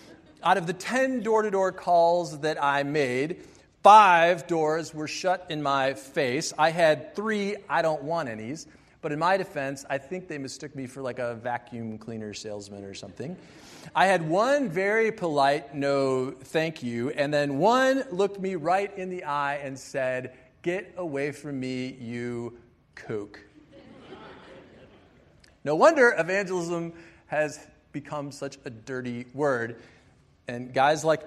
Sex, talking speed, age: male, 140 wpm, 40-59